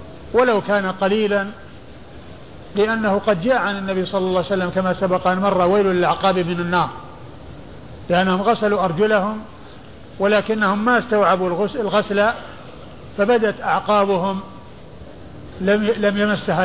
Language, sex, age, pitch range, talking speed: Arabic, male, 50-69, 185-210 Hz, 115 wpm